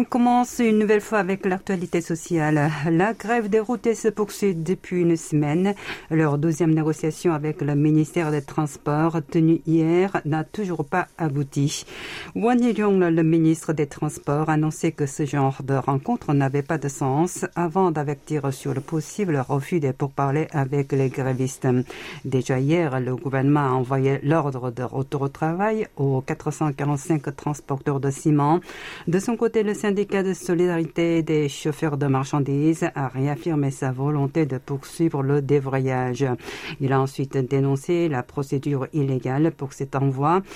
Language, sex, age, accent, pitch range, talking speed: French, female, 50-69, French, 140-170 Hz, 155 wpm